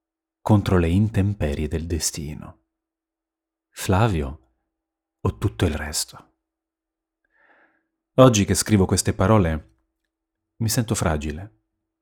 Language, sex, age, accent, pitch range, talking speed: Italian, male, 30-49, native, 85-120 Hz, 90 wpm